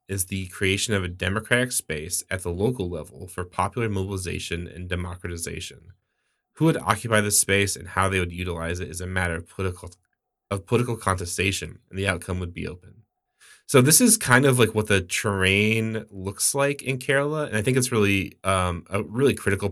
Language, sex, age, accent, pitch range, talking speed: English, male, 20-39, American, 90-115 Hz, 190 wpm